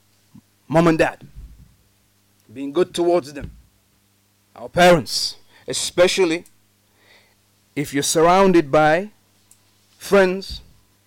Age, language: 30-49, English